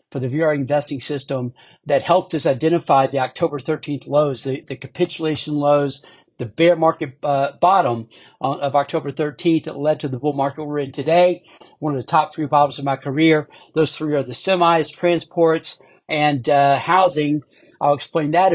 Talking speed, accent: 180 wpm, American